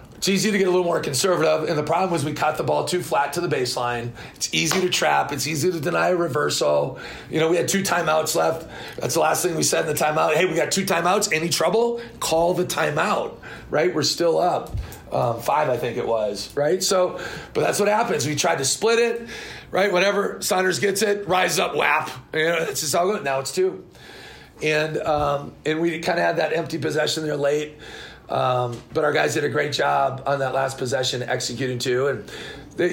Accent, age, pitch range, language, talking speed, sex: American, 40-59, 135-170 Hz, English, 225 wpm, male